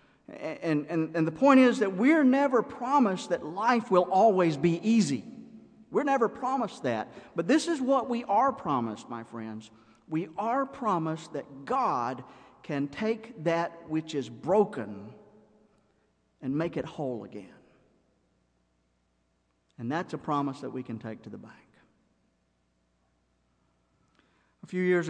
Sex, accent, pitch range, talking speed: male, American, 125-185 Hz, 140 wpm